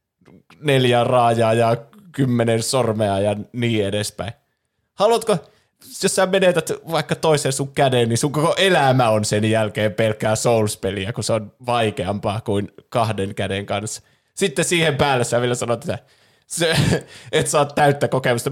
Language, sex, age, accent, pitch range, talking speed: Finnish, male, 20-39, native, 110-140 Hz, 145 wpm